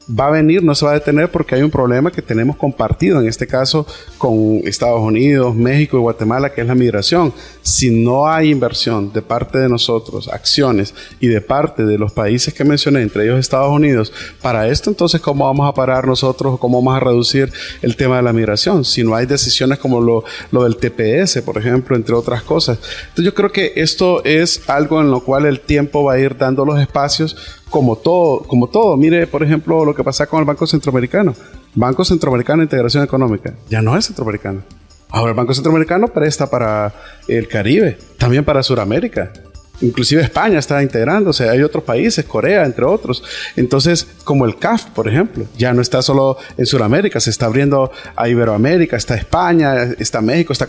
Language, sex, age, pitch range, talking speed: Spanish, male, 30-49, 120-150 Hz, 200 wpm